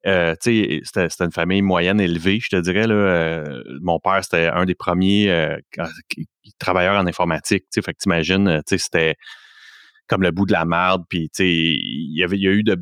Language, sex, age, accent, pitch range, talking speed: English, male, 30-49, Canadian, 85-100 Hz, 180 wpm